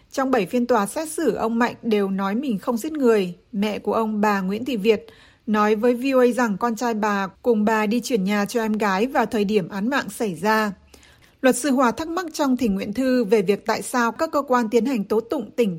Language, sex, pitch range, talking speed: Vietnamese, female, 210-250 Hz, 245 wpm